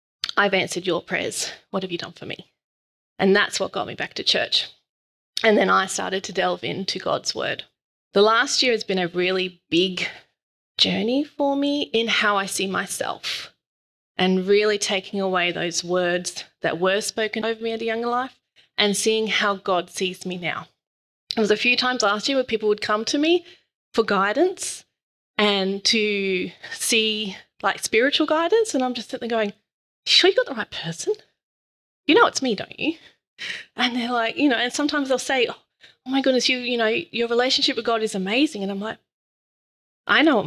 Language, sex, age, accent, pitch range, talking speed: English, female, 30-49, Australian, 190-250 Hz, 195 wpm